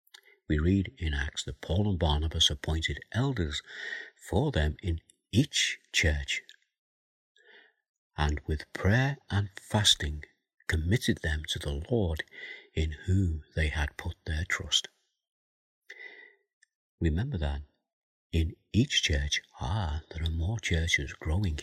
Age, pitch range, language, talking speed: 60-79, 80-100 Hz, English, 120 wpm